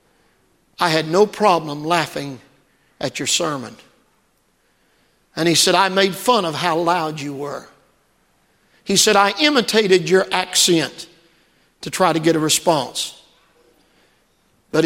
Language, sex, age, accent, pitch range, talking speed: English, male, 50-69, American, 150-180 Hz, 130 wpm